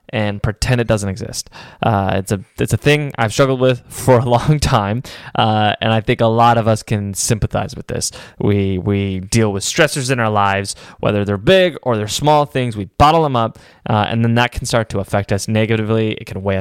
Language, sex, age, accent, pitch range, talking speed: English, male, 10-29, American, 100-125 Hz, 225 wpm